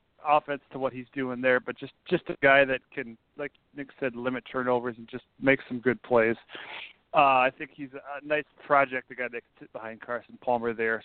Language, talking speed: English, 215 wpm